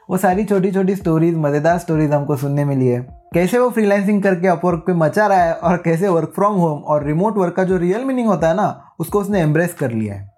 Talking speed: 235 wpm